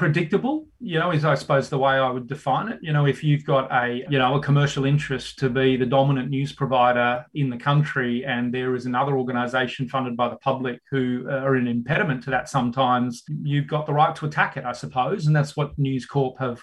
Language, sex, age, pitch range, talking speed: English, male, 30-49, 130-150 Hz, 225 wpm